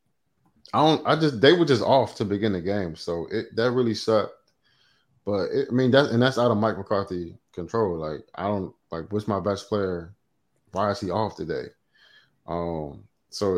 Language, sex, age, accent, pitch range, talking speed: English, male, 20-39, American, 90-115 Hz, 195 wpm